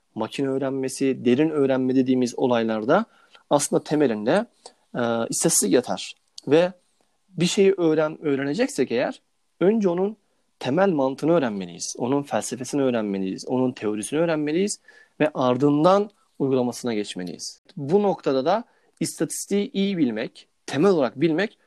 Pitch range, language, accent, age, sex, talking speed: 125-185 Hz, Turkish, native, 40-59, male, 115 wpm